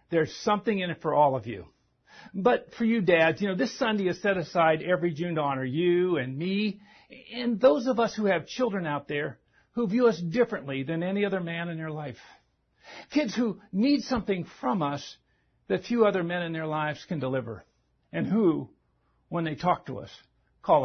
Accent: American